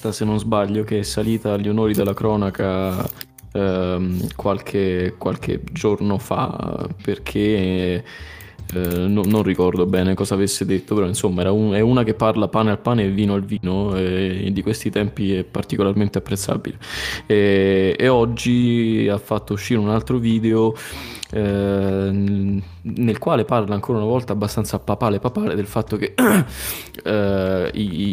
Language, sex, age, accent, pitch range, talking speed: Italian, male, 20-39, native, 100-110 Hz, 140 wpm